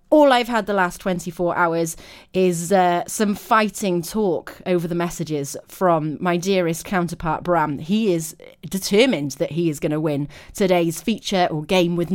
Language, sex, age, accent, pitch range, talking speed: English, female, 30-49, British, 170-235 Hz, 170 wpm